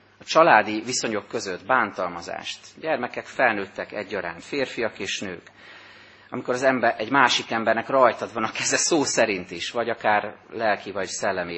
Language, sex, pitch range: Hungarian, male, 105-125 Hz